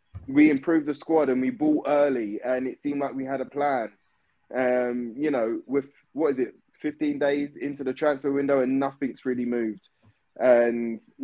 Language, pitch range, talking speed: English, 125-145 Hz, 180 wpm